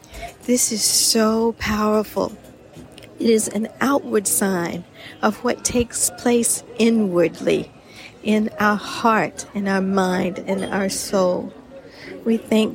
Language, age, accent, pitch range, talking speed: English, 50-69, American, 195-230 Hz, 120 wpm